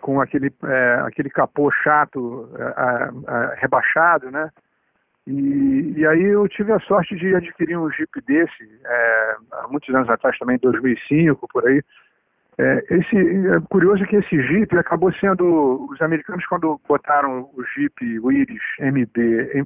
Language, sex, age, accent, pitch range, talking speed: Portuguese, male, 50-69, Brazilian, 130-175 Hz, 155 wpm